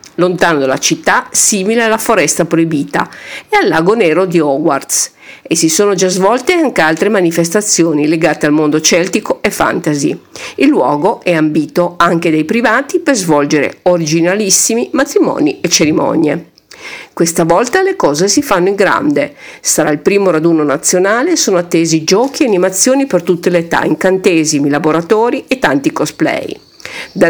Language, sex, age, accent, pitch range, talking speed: Italian, female, 50-69, native, 160-215 Hz, 150 wpm